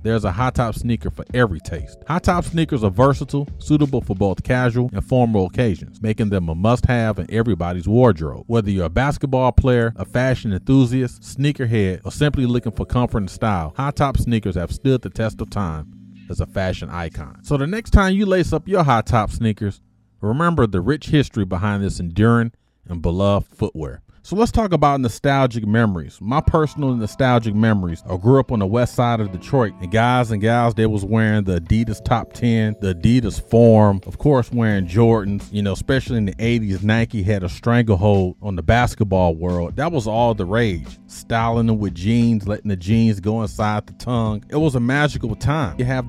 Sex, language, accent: male, English, American